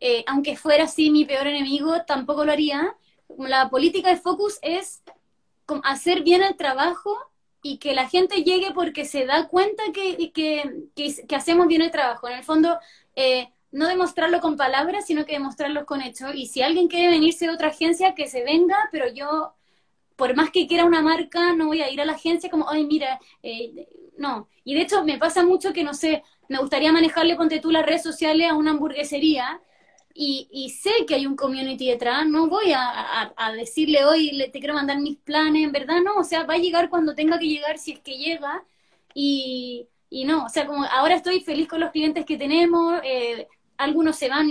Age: 20-39